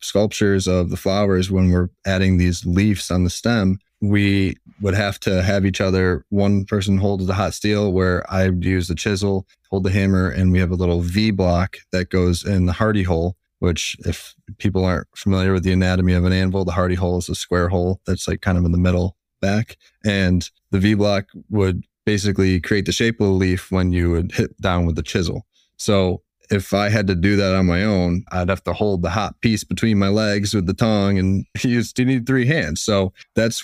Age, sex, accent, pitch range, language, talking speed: 20-39, male, American, 90-100 Hz, English, 220 wpm